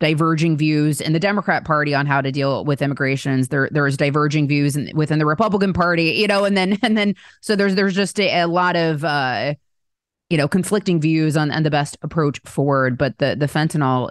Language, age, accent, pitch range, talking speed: English, 20-39, American, 140-165 Hz, 215 wpm